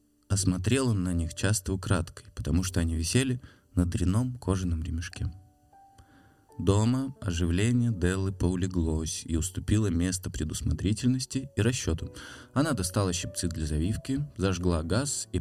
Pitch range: 85-110 Hz